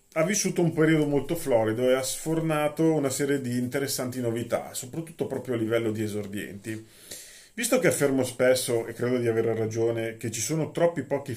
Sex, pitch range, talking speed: male, 110-130 Hz, 180 wpm